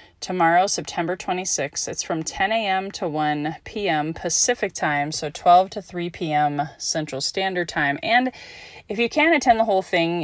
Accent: American